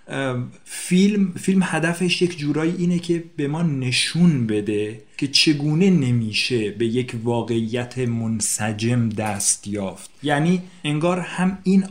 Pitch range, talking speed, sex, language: 125-160 Hz, 120 wpm, male, Persian